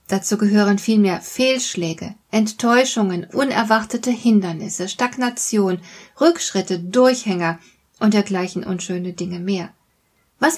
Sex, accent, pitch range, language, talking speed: female, German, 185-240 Hz, German, 90 wpm